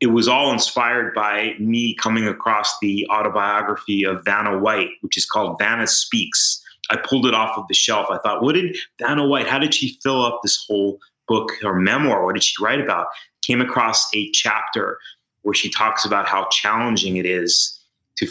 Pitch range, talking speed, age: 100-120 Hz, 195 wpm, 30-49